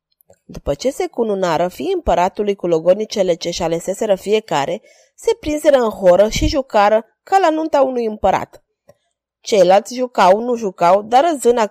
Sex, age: female, 20-39